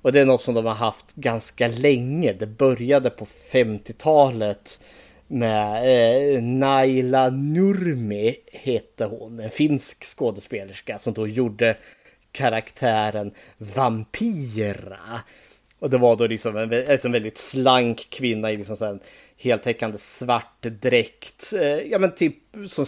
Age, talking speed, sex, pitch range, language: 20-39, 130 wpm, male, 115-145 Hz, Swedish